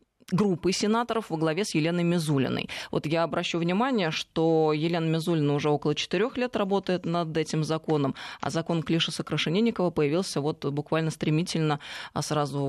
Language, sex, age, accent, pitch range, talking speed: Russian, female, 20-39, native, 150-195 Hz, 145 wpm